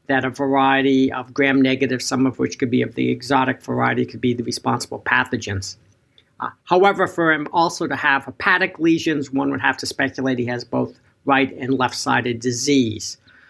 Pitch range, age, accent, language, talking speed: 120-145 Hz, 50-69, American, English, 180 wpm